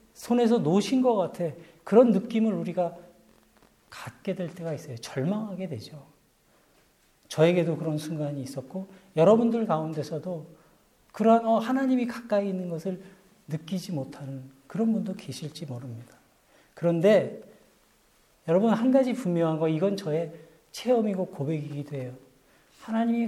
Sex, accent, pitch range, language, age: male, native, 145-205 Hz, Korean, 40-59